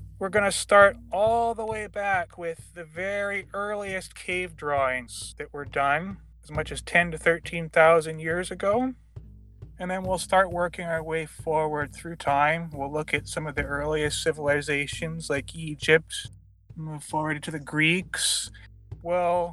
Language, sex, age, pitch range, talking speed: English, male, 30-49, 145-175 Hz, 155 wpm